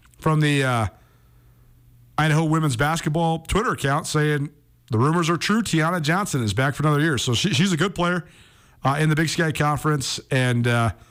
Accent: American